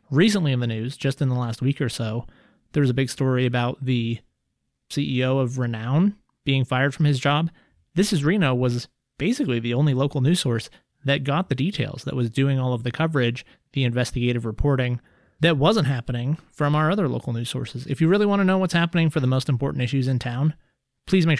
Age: 30-49